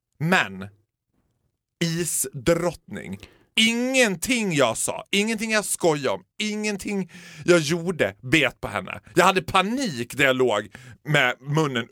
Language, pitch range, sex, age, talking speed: Swedish, 120-180 Hz, male, 30-49, 115 wpm